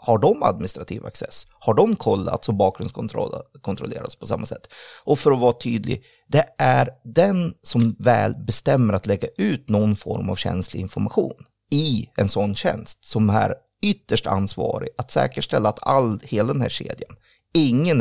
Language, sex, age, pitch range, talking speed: English, male, 30-49, 105-130 Hz, 165 wpm